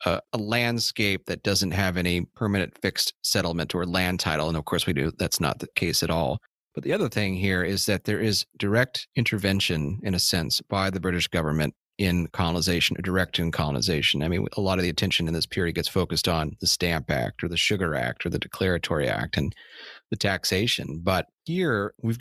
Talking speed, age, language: 210 wpm, 30-49, English